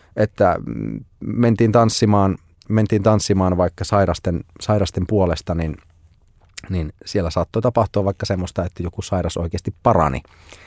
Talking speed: 120 wpm